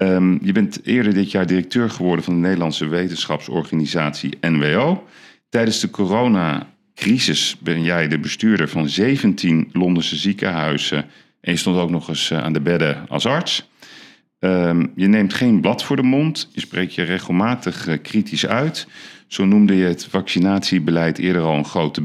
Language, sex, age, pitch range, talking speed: Dutch, male, 40-59, 80-110 Hz, 150 wpm